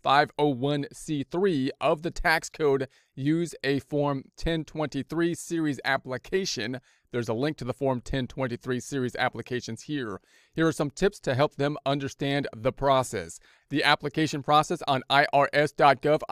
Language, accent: English, American